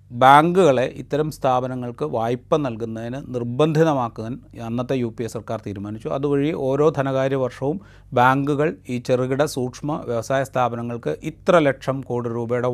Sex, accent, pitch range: male, native, 120-155 Hz